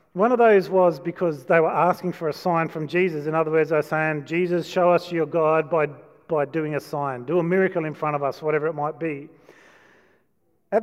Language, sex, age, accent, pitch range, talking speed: English, male, 40-59, Australian, 155-195 Hz, 225 wpm